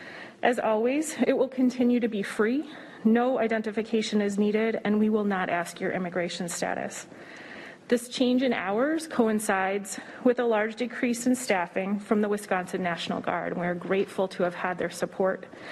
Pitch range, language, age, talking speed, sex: 175-230 Hz, English, 30-49, 170 wpm, female